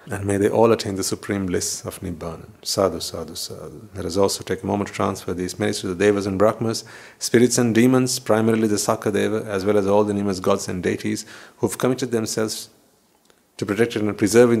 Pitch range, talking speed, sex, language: 95-110 Hz, 210 wpm, male, English